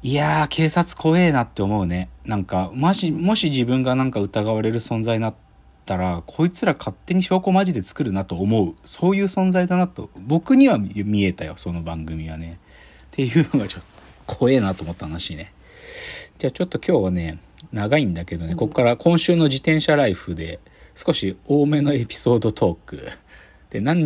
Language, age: Japanese, 40-59